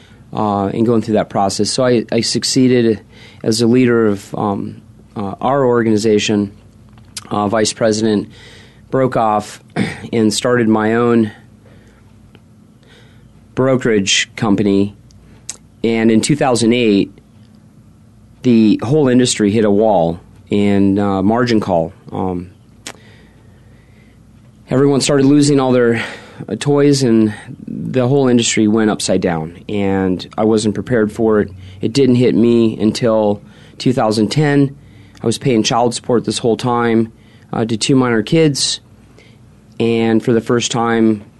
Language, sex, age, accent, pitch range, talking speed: English, male, 30-49, American, 105-115 Hz, 125 wpm